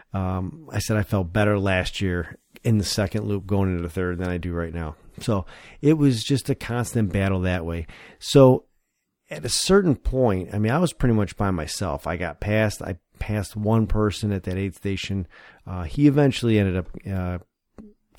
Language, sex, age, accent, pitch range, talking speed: English, male, 40-59, American, 95-115 Hz, 200 wpm